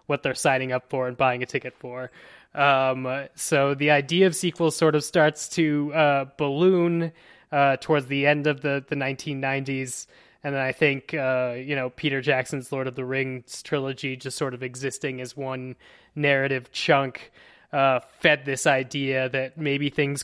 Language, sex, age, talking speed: English, male, 20-39, 175 wpm